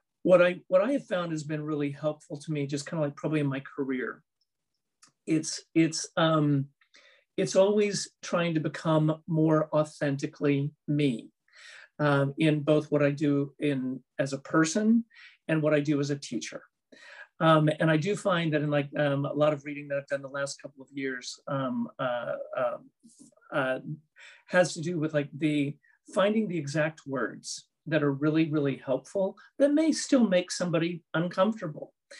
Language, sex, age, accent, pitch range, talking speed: English, male, 40-59, American, 145-175 Hz, 175 wpm